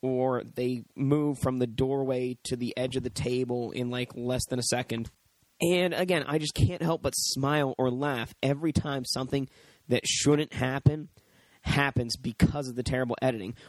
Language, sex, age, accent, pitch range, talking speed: English, male, 30-49, American, 125-150 Hz, 175 wpm